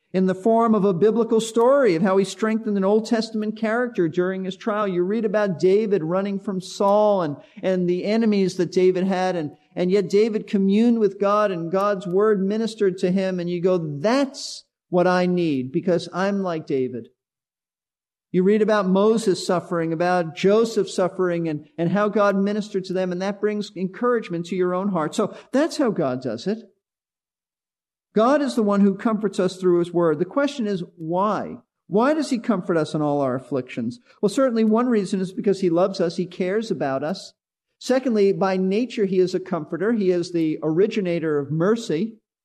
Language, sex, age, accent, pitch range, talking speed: English, male, 50-69, American, 175-215 Hz, 190 wpm